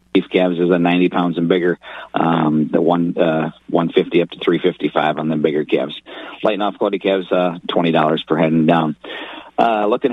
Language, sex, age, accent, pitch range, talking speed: English, male, 40-59, American, 85-95 Hz, 220 wpm